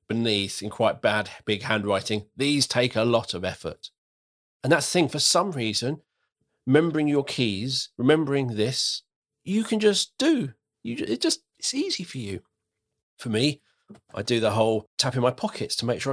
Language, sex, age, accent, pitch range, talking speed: English, male, 40-59, British, 110-160 Hz, 175 wpm